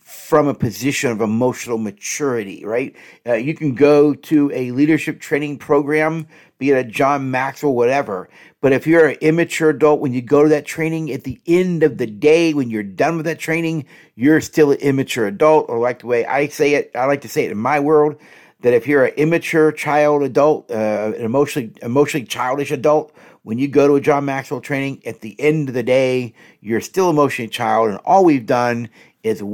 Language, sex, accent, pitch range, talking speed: English, male, American, 115-155 Hz, 210 wpm